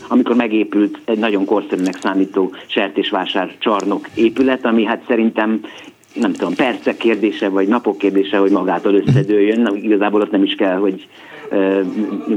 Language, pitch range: Hungarian, 100-115 Hz